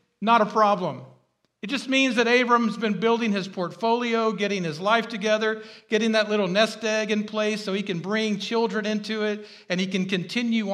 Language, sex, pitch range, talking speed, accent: English, male, 130-200 Hz, 190 wpm, American